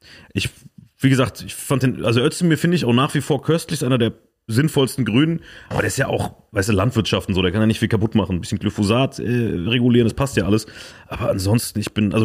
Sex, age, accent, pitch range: male, 30-49, German, 105-135 Hz